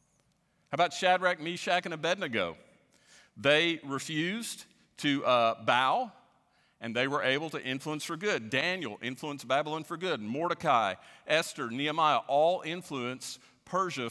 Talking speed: 130 wpm